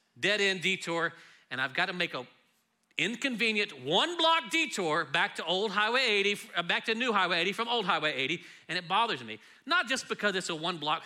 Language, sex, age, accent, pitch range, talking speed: English, male, 40-59, American, 185-255 Hz, 190 wpm